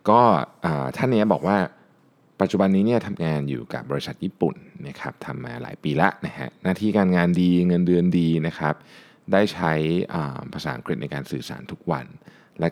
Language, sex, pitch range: Thai, male, 70-90 Hz